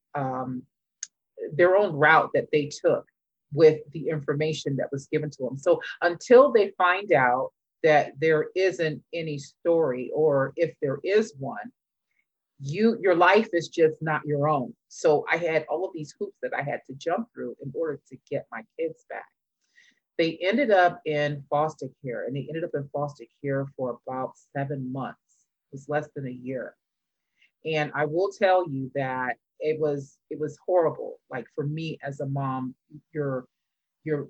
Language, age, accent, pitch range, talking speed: English, 30-49, American, 140-165 Hz, 175 wpm